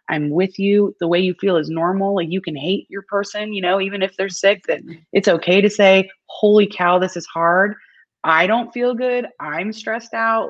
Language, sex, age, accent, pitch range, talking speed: English, female, 20-39, American, 165-195 Hz, 215 wpm